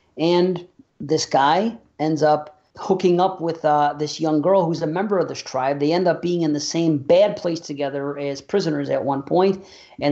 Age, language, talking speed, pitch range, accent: 40-59, English, 200 wpm, 145-180 Hz, American